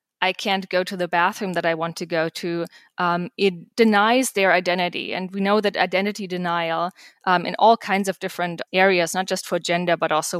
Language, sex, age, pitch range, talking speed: English, female, 20-39, 175-220 Hz, 210 wpm